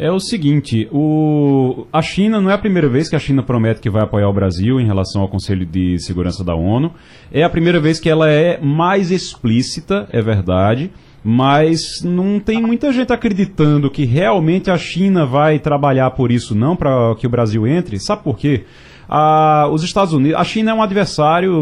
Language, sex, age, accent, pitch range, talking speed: Portuguese, male, 30-49, Brazilian, 125-180 Hz, 195 wpm